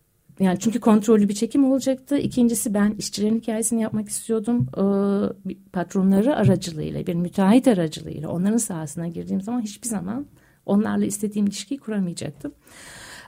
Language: Turkish